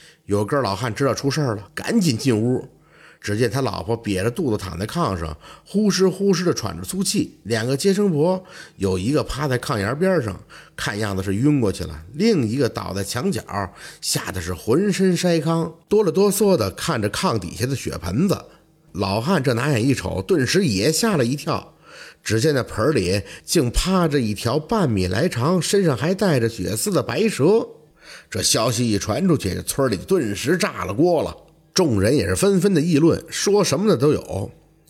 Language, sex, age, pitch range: Chinese, male, 50-69, 105-170 Hz